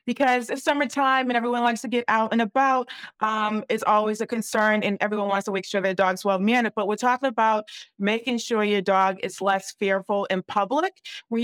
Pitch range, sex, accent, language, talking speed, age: 205-240 Hz, female, American, English, 205 wpm, 30-49